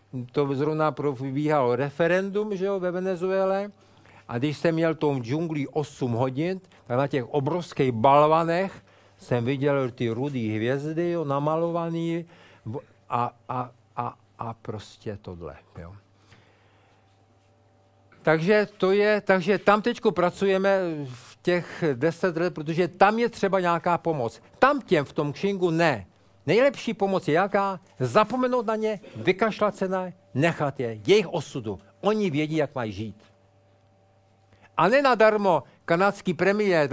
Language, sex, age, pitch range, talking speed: Czech, male, 50-69, 115-185 Hz, 130 wpm